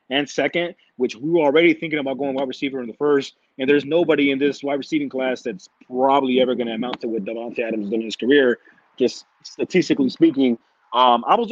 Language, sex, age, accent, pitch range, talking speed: English, male, 30-49, American, 130-160 Hz, 215 wpm